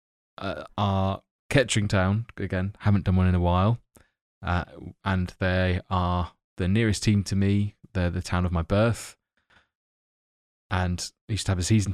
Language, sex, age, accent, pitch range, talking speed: English, male, 20-39, British, 95-110 Hz, 160 wpm